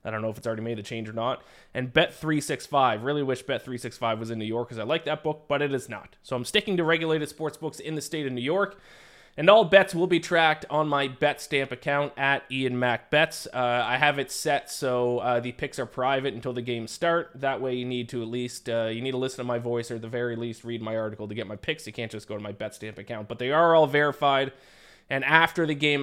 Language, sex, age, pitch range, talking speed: English, male, 20-39, 120-150 Hz, 265 wpm